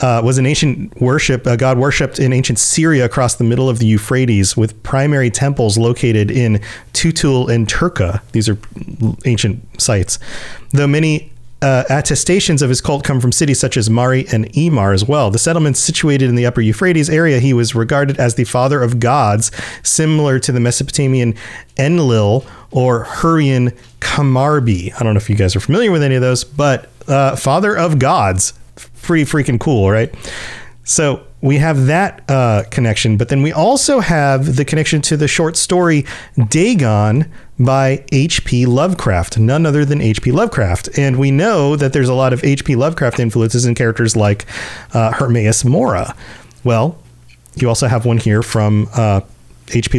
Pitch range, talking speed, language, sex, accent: 110-140 Hz, 175 wpm, English, male, American